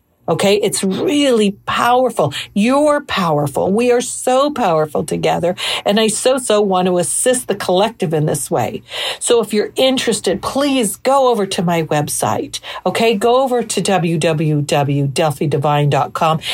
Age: 50-69